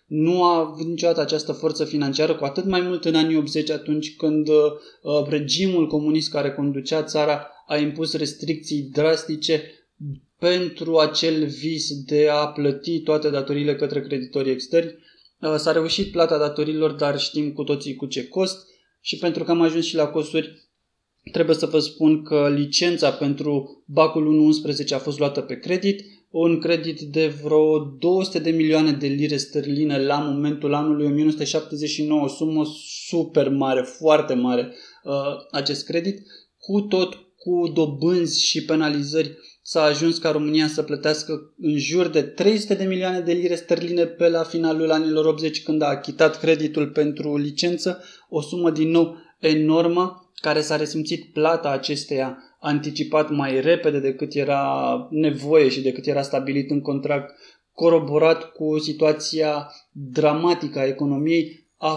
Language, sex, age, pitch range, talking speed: Romanian, male, 20-39, 145-165 Hz, 145 wpm